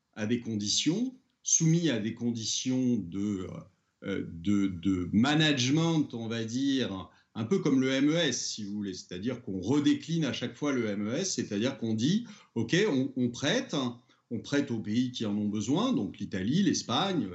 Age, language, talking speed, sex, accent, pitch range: 50-69, French, 165 wpm, male, French, 105-145 Hz